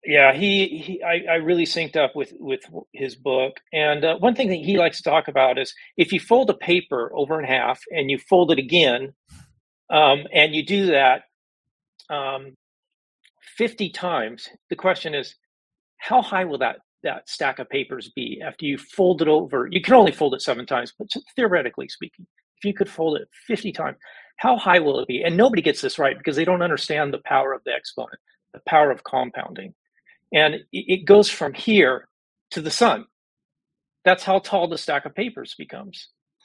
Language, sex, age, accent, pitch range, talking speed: English, male, 40-59, American, 150-195 Hz, 195 wpm